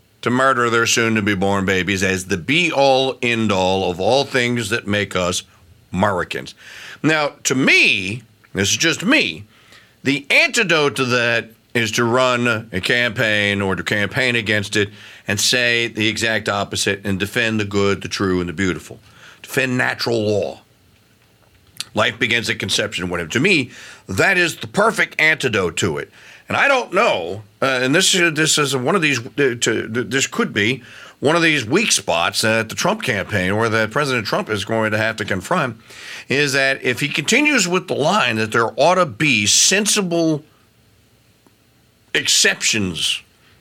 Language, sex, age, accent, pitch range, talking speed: English, male, 50-69, American, 105-170 Hz, 165 wpm